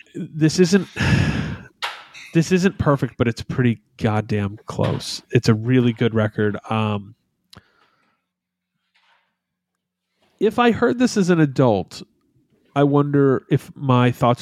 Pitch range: 115-145 Hz